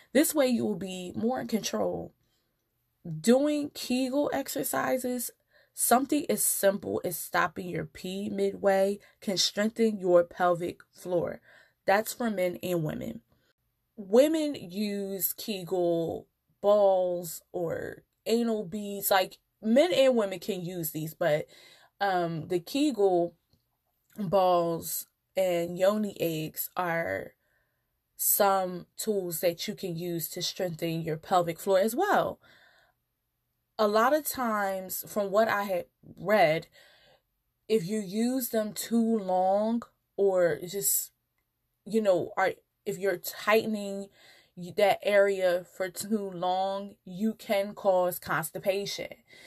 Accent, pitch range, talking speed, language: American, 180-225 Hz, 120 wpm, English